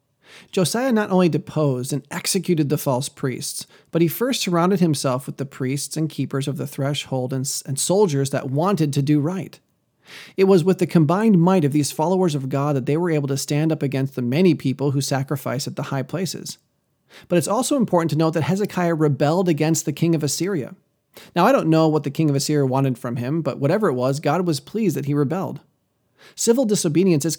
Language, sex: English, male